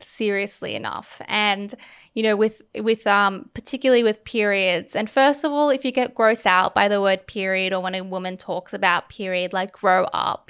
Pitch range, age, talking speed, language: 185-215 Hz, 10-29, 195 wpm, English